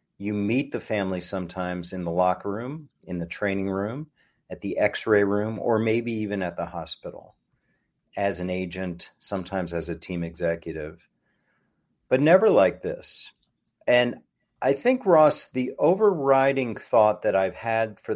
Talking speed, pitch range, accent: 150 wpm, 95-130 Hz, American